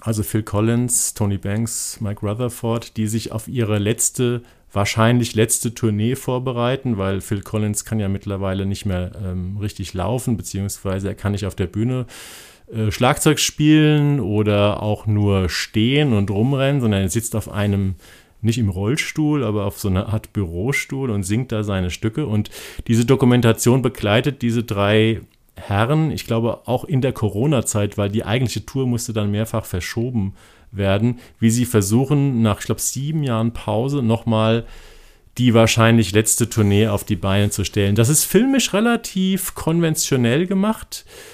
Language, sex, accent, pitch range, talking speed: German, male, German, 105-130 Hz, 160 wpm